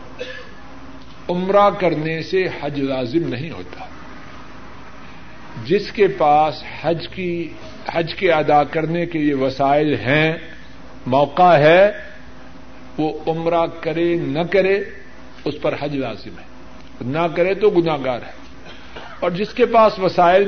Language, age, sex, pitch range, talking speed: Urdu, 60-79, male, 140-185 Hz, 125 wpm